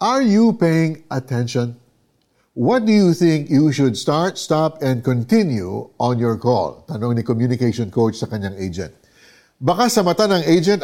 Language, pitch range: Filipino, 125-185 Hz